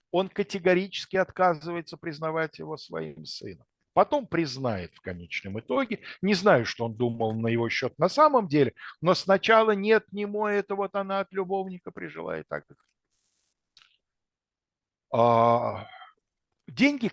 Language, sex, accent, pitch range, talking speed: Russian, male, native, 125-185 Hz, 130 wpm